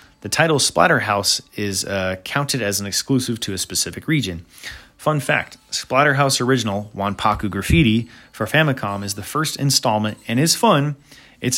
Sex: male